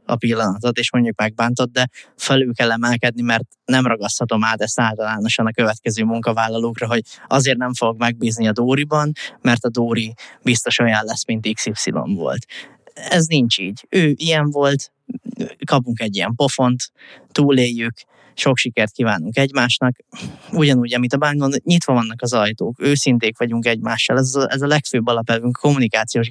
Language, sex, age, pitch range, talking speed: Hungarian, male, 20-39, 115-130 Hz, 155 wpm